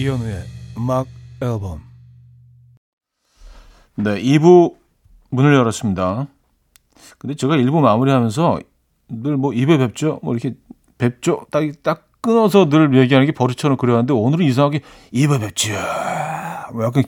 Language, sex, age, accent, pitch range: Korean, male, 40-59, native, 120-150 Hz